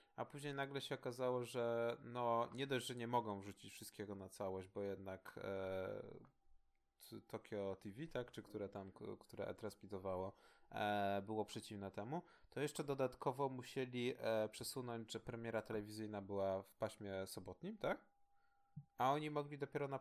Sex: male